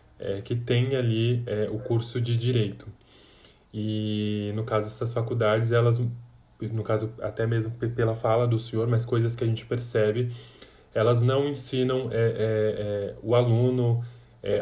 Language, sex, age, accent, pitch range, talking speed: Portuguese, male, 20-39, Brazilian, 110-120 Hz, 155 wpm